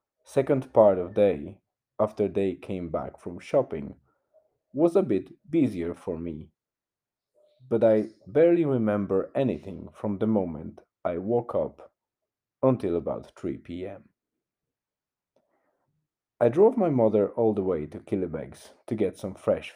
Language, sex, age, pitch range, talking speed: English, male, 40-59, 95-120 Hz, 135 wpm